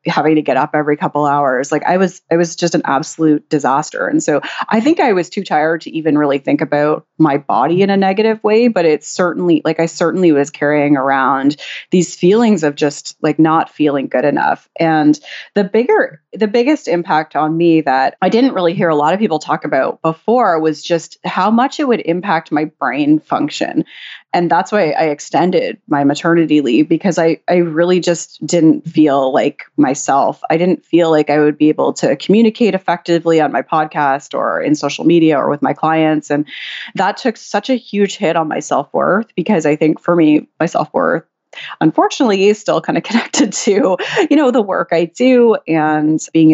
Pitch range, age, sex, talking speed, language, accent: 155-190 Hz, 30-49, female, 200 wpm, English, American